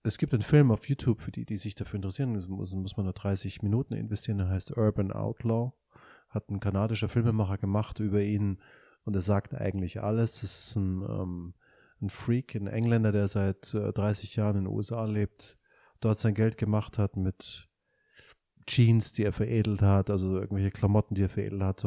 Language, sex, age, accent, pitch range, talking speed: German, male, 30-49, German, 100-110 Hz, 200 wpm